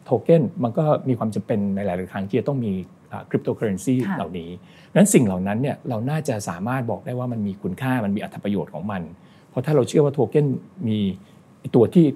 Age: 60-79